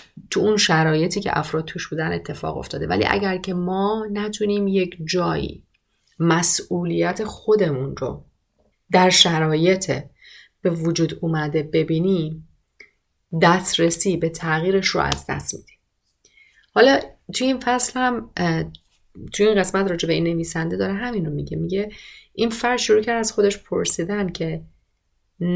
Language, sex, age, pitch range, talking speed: Persian, female, 30-49, 160-210 Hz, 130 wpm